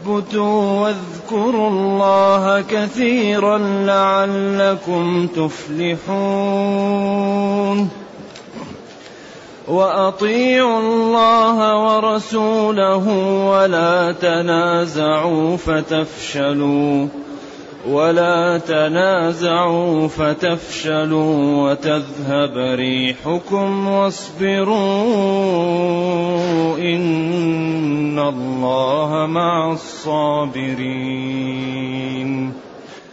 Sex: male